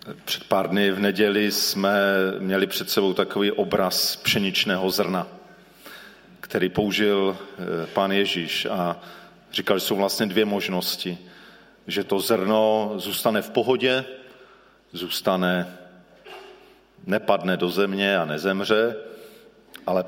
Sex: male